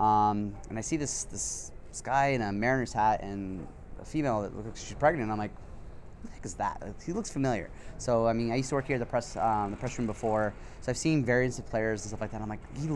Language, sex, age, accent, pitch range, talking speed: English, male, 30-49, American, 105-130 Hz, 260 wpm